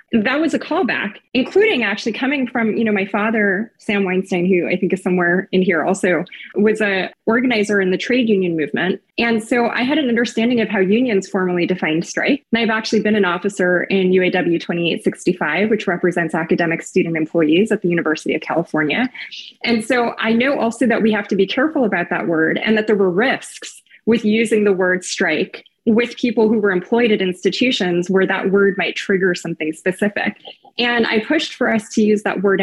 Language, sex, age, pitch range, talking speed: English, female, 20-39, 190-225 Hz, 200 wpm